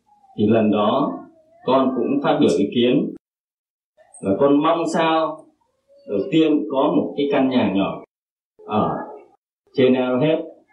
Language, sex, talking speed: Vietnamese, male, 140 wpm